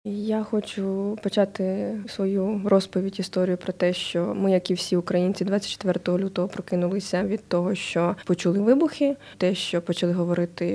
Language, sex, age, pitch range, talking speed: Russian, female, 20-39, 185-230 Hz, 145 wpm